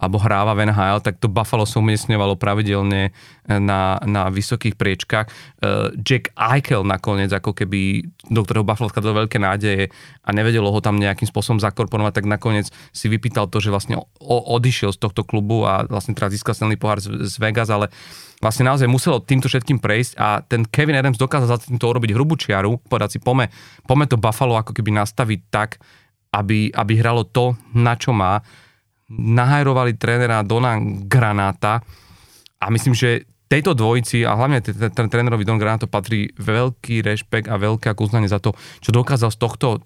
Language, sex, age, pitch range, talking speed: Slovak, male, 30-49, 105-125 Hz, 165 wpm